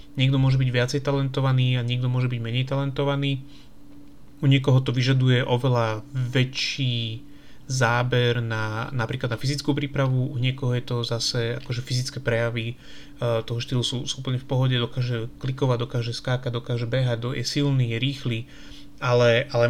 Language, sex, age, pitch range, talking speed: Slovak, male, 30-49, 120-140 Hz, 160 wpm